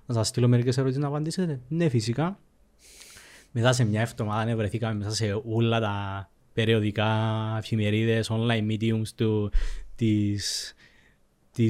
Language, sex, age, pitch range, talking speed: Greek, male, 20-39, 110-130 Hz, 120 wpm